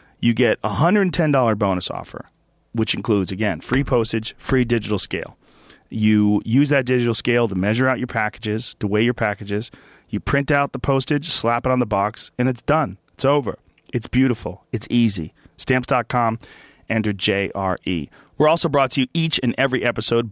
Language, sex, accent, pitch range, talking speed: English, male, American, 105-130 Hz, 175 wpm